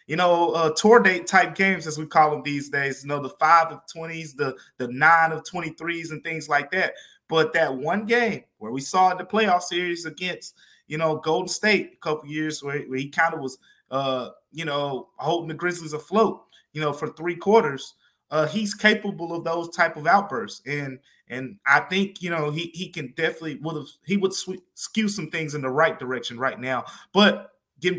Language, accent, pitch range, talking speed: English, American, 145-190 Hz, 210 wpm